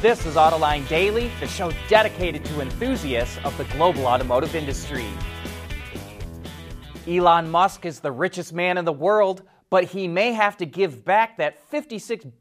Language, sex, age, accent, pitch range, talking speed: English, male, 30-49, American, 130-200 Hz, 155 wpm